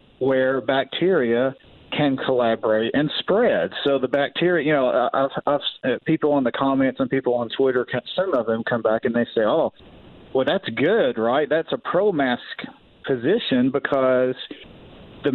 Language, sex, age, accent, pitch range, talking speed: English, male, 40-59, American, 125-160 Hz, 150 wpm